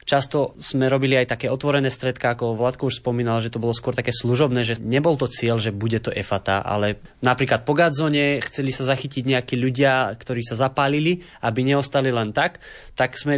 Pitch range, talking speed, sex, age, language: 120-145 Hz, 195 wpm, male, 20-39, Slovak